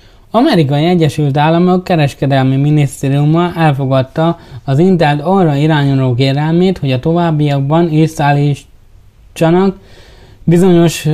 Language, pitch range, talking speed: Hungarian, 135-175 Hz, 90 wpm